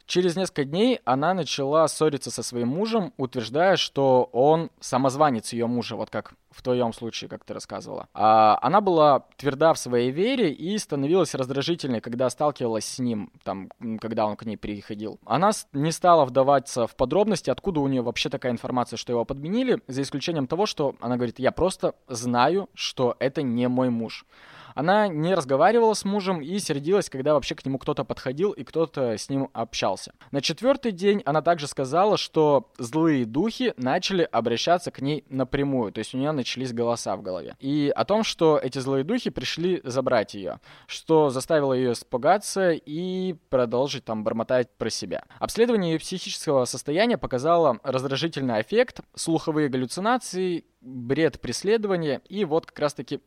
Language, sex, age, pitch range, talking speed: Russian, male, 20-39, 125-175 Hz, 165 wpm